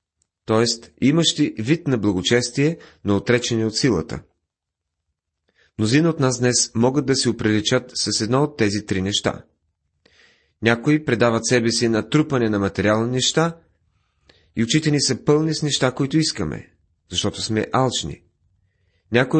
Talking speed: 140 wpm